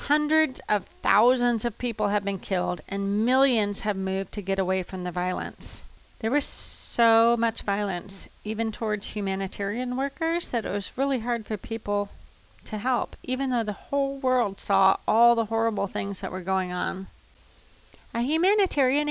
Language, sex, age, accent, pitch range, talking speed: English, female, 30-49, American, 200-255 Hz, 165 wpm